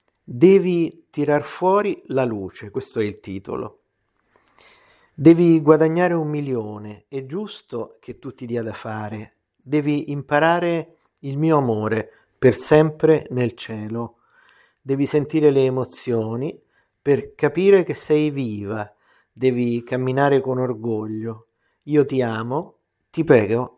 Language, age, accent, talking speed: Italian, 50-69, native, 120 wpm